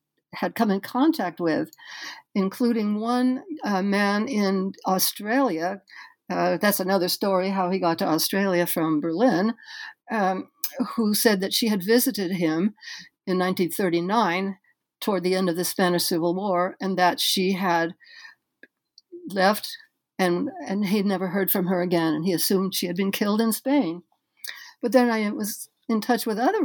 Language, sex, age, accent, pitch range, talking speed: English, female, 60-79, American, 185-255 Hz, 160 wpm